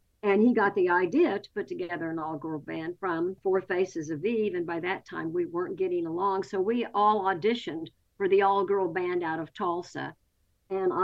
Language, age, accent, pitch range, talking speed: English, 50-69, American, 170-220 Hz, 195 wpm